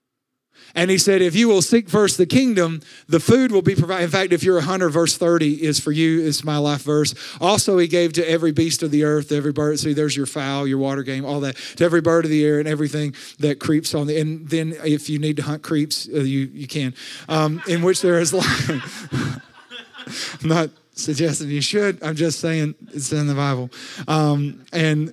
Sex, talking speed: male, 225 wpm